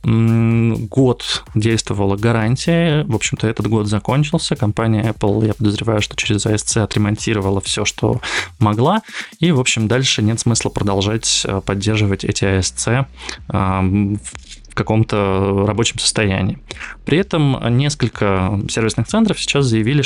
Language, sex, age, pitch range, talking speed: Russian, male, 20-39, 105-130 Hz, 115 wpm